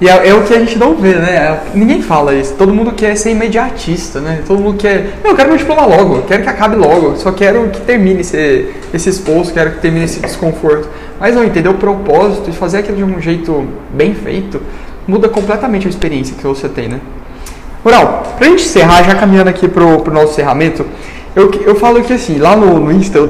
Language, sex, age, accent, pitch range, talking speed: Portuguese, male, 20-39, Brazilian, 175-230 Hz, 215 wpm